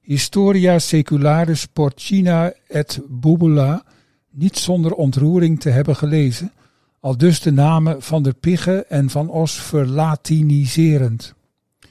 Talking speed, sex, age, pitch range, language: 110 wpm, male, 50-69, 140-170 Hz, Dutch